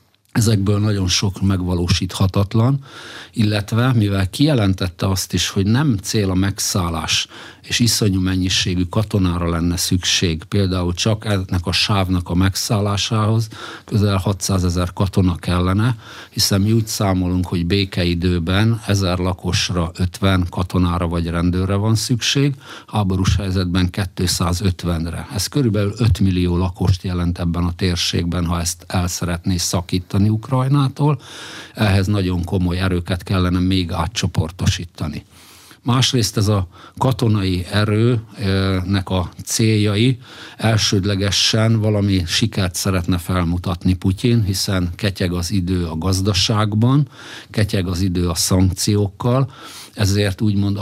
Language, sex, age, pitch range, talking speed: Hungarian, male, 50-69, 90-110 Hz, 115 wpm